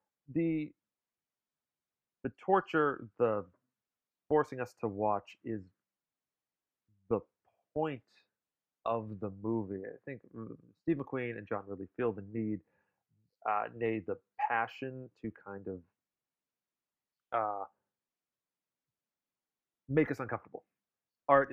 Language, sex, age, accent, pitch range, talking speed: English, male, 30-49, American, 110-160 Hz, 100 wpm